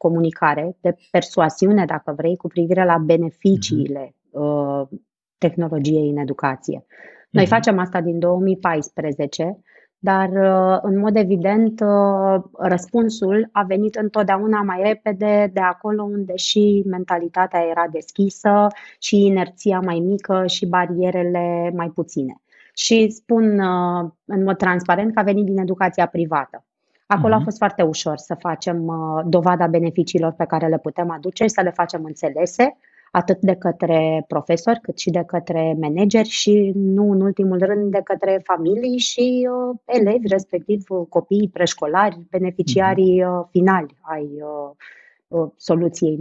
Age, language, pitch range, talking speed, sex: 20-39, Romanian, 165-200 Hz, 130 wpm, female